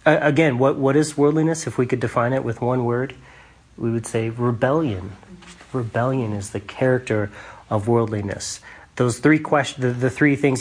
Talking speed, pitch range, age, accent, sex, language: 170 wpm, 110-140 Hz, 30-49, American, male, English